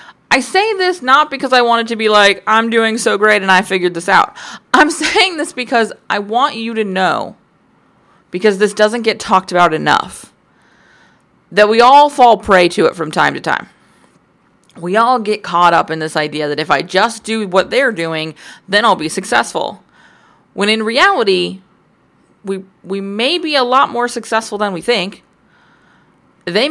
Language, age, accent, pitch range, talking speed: English, 30-49, American, 185-235 Hz, 185 wpm